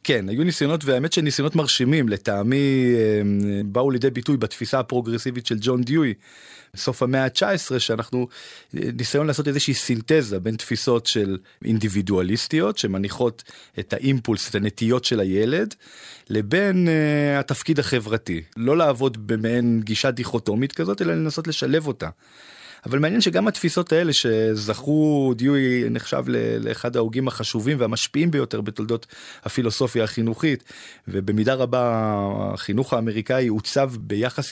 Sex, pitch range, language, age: male, 110-140 Hz, Hebrew, 30-49